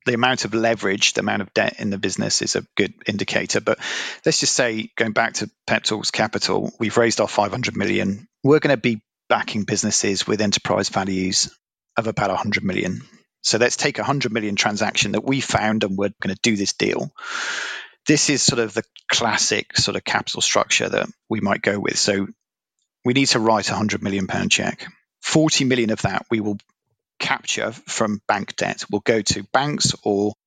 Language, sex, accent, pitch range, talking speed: English, male, British, 100-120 Hz, 200 wpm